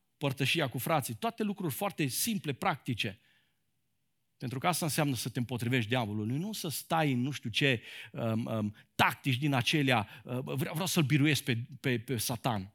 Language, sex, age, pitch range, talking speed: Romanian, male, 50-69, 120-150 Hz, 155 wpm